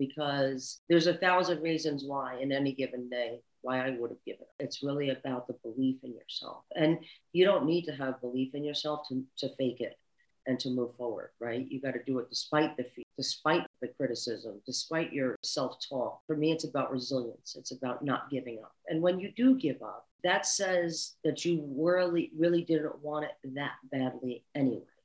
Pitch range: 125-150 Hz